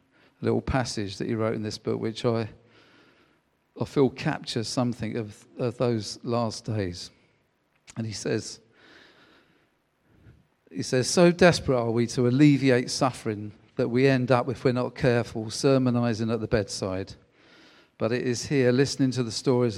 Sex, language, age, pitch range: male, English, 40-59, 110-125 Hz